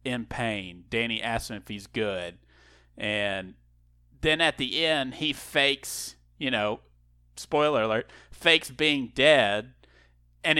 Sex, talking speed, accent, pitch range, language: male, 130 wpm, American, 100-140 Hz, English